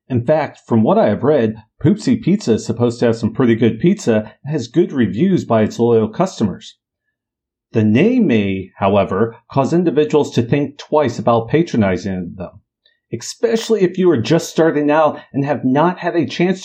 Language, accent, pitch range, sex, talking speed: English, American, 115-170 Hz, male, 180 wpm